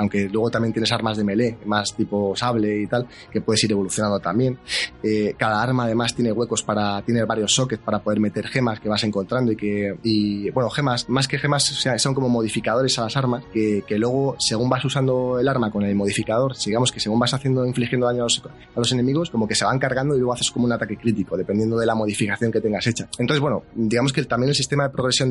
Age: 20-39